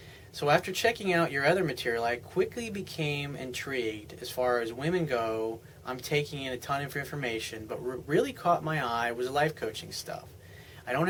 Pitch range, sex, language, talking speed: 115-150 Hz, male, English, 195 wpm